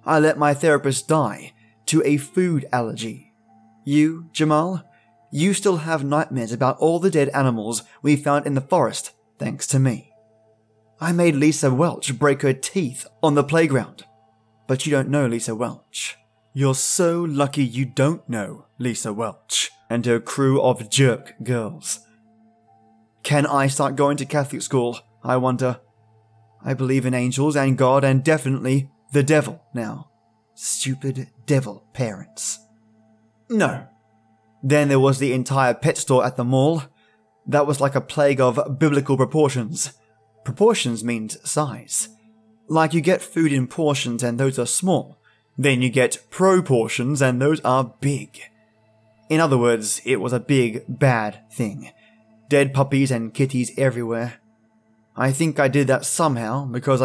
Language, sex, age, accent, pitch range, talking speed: English, male, 20-39, British, 115-150 Hz, 150 wpm